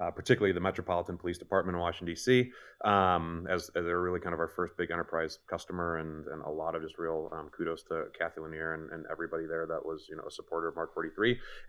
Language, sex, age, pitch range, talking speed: English, male, 30-49, 85-100 Hz, 240 wpm